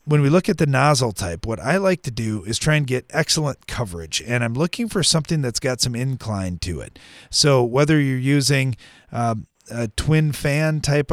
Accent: American